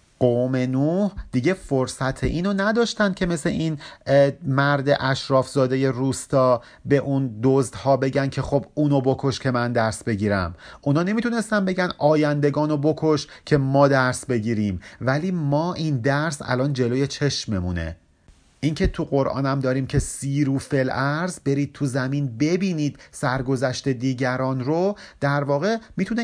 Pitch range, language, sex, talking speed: 125-165 Hz, Persian, male, 135 wpm